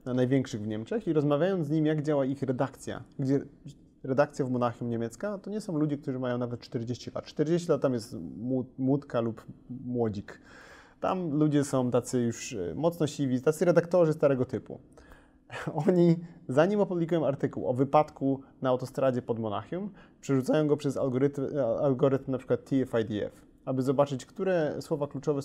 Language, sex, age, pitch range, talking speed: Polish, male, 30-49, 125-155 Hz, 160 wpm